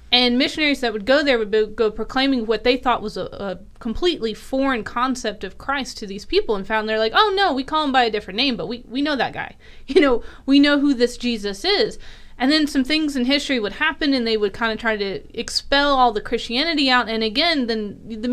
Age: 30-49